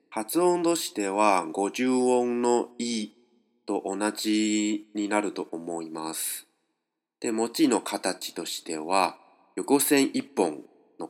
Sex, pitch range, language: male, 95-140 Hz, Chinese